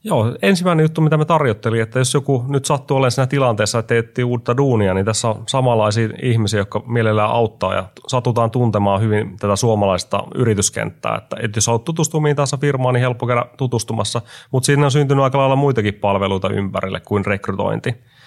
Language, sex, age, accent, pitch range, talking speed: Finnish, male, 30-49, native, 105-125 Hz, 175 wpm